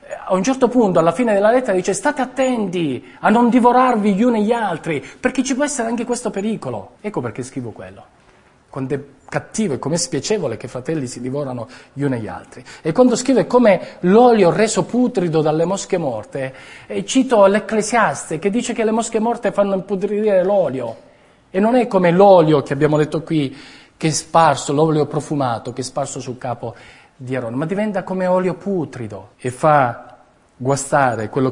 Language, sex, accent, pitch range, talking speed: Italian, male, native, 130-190 Hz, 190 wpm